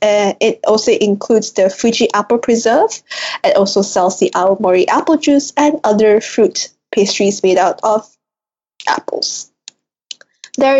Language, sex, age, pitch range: Japanese, female, 20-39, 205-250 Hz